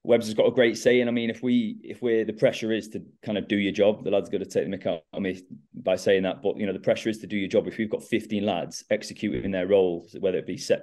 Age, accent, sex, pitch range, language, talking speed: 20-39, British, male, 95-115 Hz, English, 310 wpm